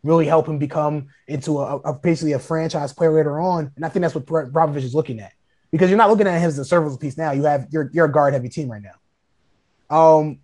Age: 20-39